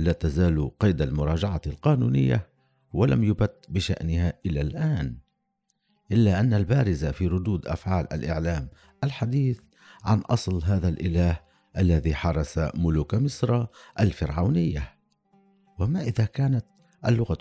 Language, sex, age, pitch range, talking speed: Arabic, male, 60-79, 85-125 Hz, 105 wpm